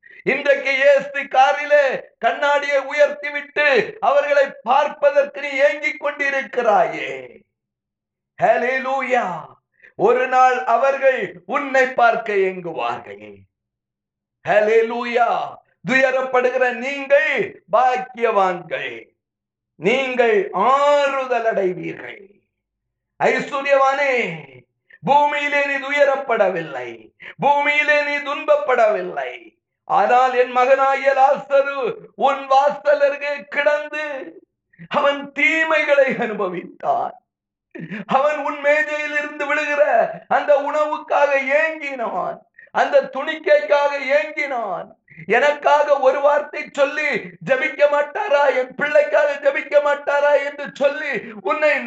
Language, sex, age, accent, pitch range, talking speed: Tamil, male, 50-69, native, 255-295 Hz, 60 wpm